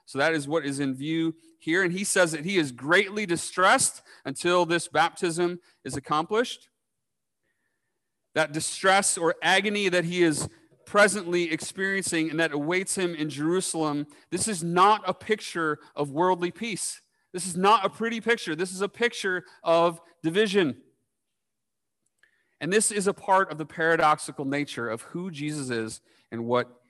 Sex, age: male, 40-59